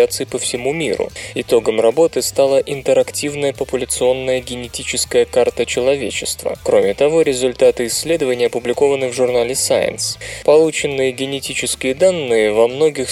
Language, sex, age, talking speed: Russian, male, 20-39, 110 wpm